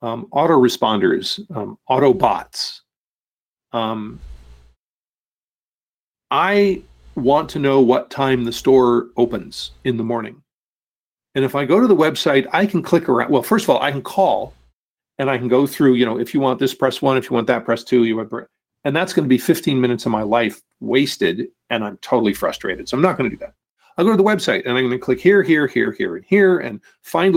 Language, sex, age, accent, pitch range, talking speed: English, male, 40-59, American, 115-145 Hz, 215 wpm